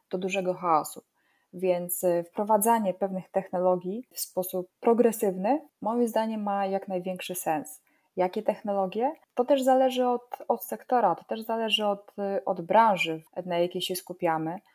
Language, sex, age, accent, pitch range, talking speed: Polish, female, 20-39, native, 175-195 Hz, 140 wpm